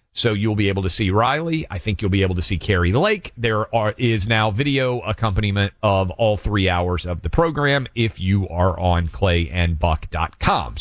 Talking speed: 190 wpm